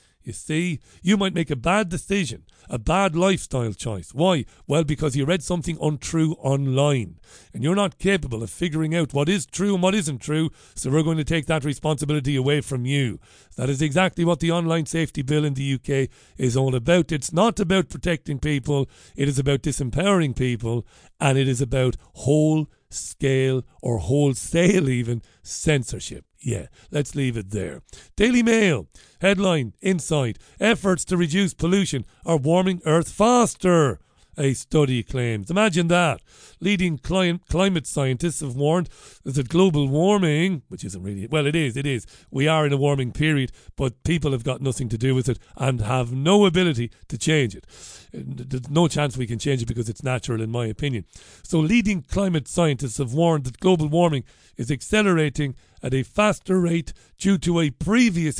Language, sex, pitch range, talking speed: English, male, 130-175 Hz, 175 wpm